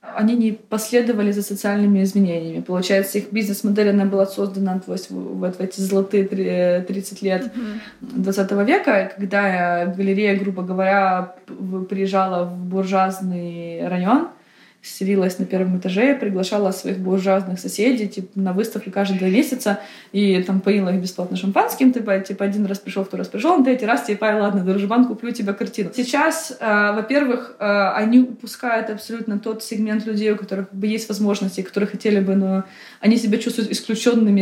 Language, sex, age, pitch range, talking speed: Russian, female, 20-39, 195-245 Hz, 155 wpm